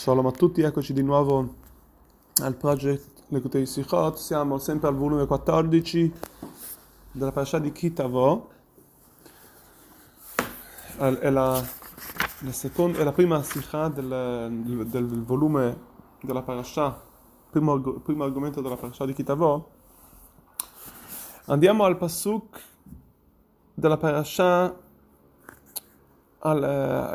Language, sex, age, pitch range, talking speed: Italian, male, 20-39, 135-160 Hz, 105 wpm